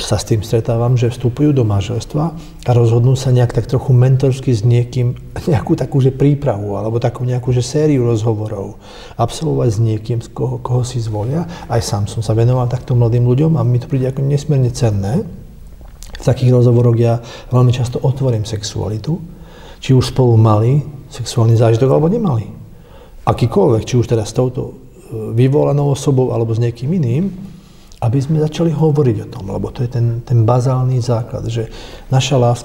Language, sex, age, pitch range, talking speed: Slovak, male, 40-59, 115-140 Hz, 165 wpm